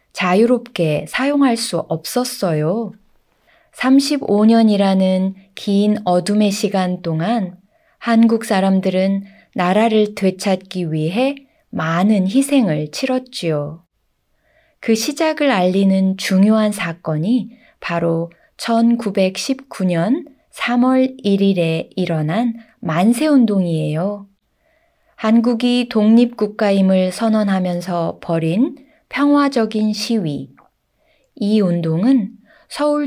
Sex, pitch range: female, 180-245 Hz